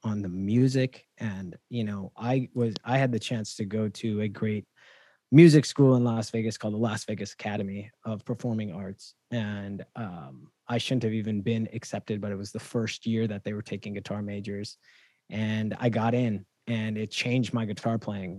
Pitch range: 105-125 Hz